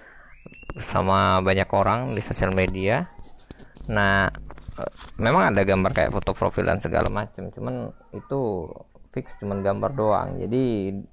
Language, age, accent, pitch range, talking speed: Indonesian, 20-39, native, 100-120 Hz, 130 wpm